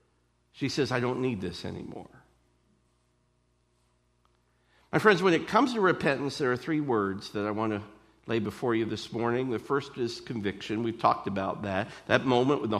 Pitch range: 105-155 Hz